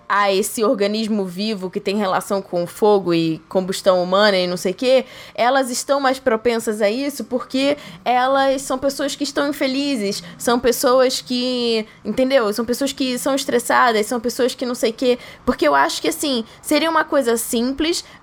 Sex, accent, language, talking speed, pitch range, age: female, Brazilian, Portuguese, 180 wpm, 220-275 Hz, 10-29